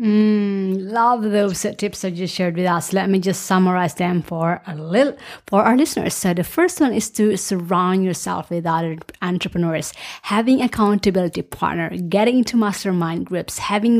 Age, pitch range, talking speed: 30-49, 180-215 Hz, 165 wpm